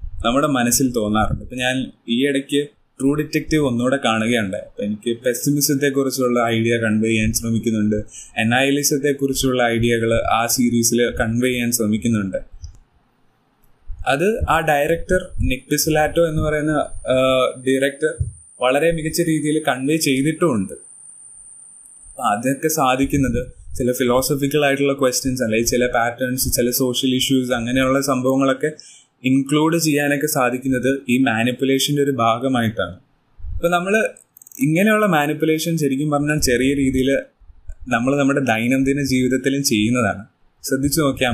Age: 20-39